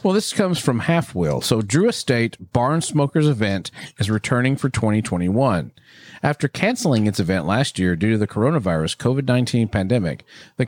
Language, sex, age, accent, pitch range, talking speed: English, male, 50-69, American, 105-140 Hz, 165 wpm